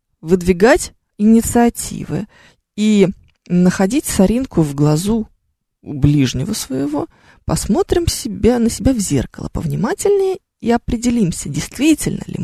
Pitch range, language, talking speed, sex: 175-270 Hz, Russian, 90 wpm, female